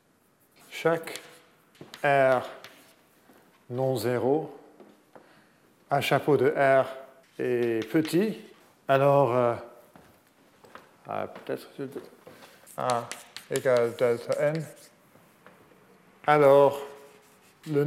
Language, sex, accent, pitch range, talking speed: French, male, French, 125-150 Hz, 65 wpm